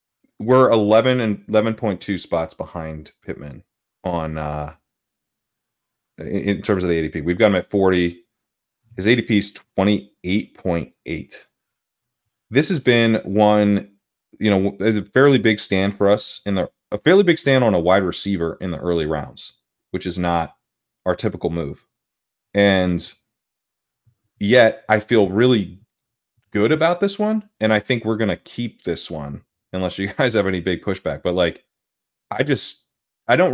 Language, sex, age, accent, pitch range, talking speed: English, male, 30-49, American, 90-115 Hz, 165 wpm